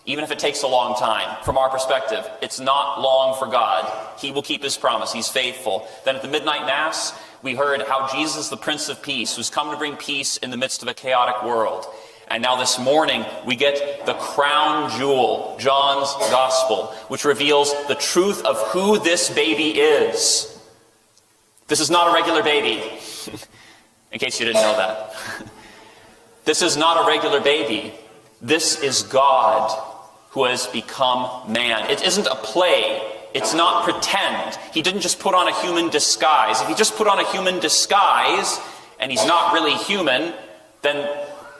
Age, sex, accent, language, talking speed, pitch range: 30-49, male, American, English, 175 wpm, 110-155 Hz